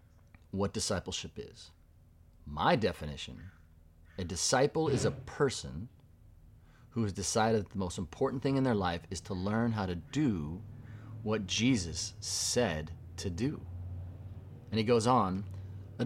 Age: 30-49